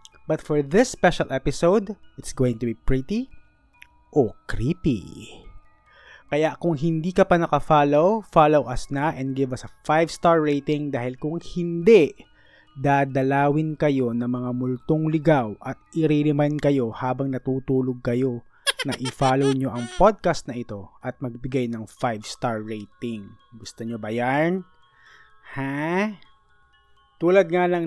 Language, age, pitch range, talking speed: Filipino, 20-39, 125-155 Hz, 140 wpm